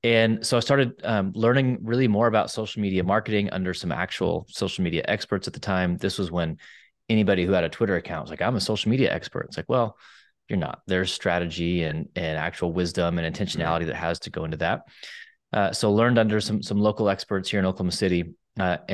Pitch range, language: 85-105 Hz, English